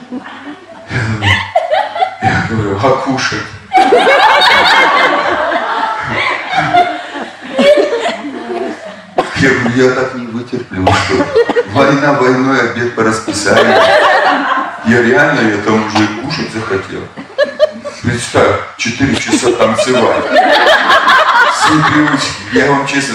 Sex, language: male, Russian